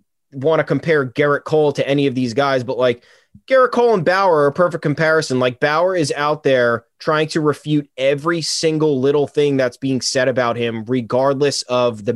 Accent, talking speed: American, 195 wpm